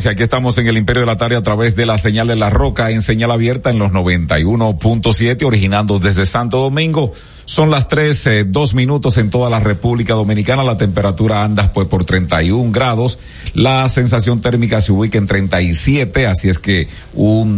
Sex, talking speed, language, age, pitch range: male, 185 wpm, Spanish, 50-69, 95-120 Hz